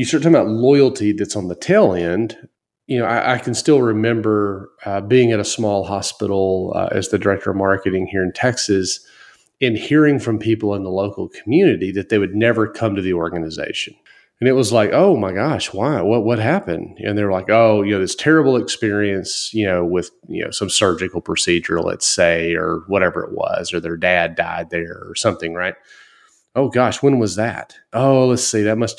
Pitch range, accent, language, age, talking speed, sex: 95-120 Hz, American, English, 30-49, 205 wpm, male